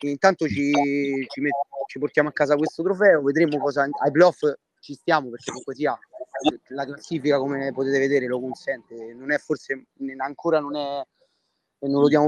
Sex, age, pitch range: male, 30-49, 135-160 Hz